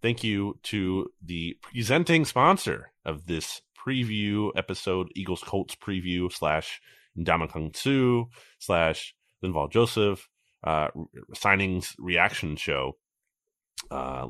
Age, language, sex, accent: 30-49, English, male, American